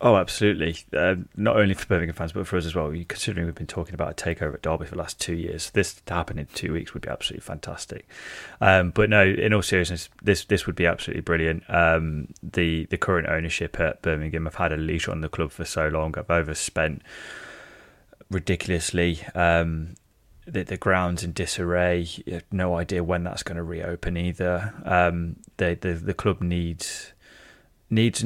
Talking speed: 200 wpm